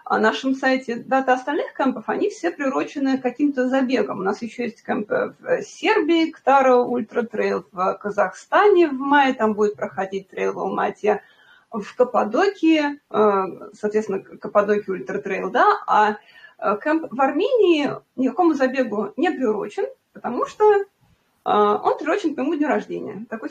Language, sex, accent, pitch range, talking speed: Russian, female, native, 215-295 Hz, 135 wpm